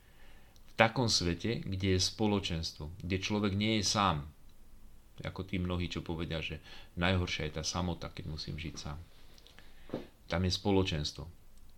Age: 40-59